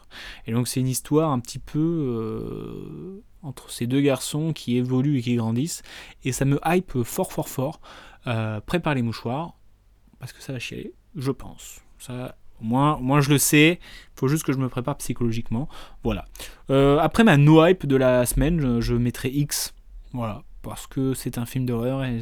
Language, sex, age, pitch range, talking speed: French, male, 20-39, 120-150 Hz, 190 wpm